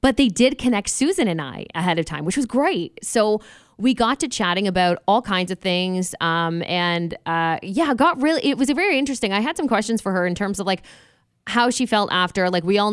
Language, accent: English, American